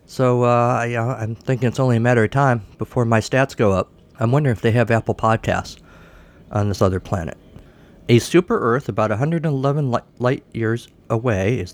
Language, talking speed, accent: English, 180 wpm, American